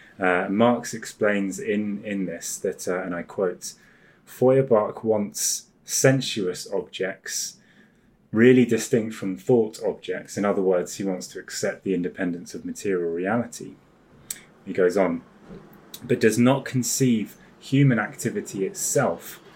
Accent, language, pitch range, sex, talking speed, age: British, English, 95-120 Hz, male, 130 wpm, 20-39